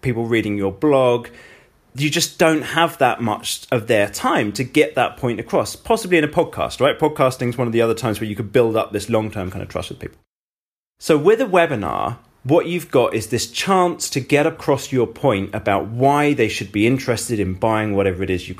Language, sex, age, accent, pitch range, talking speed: English, male, 30-49, British, 110-155 Hz, 225 wpm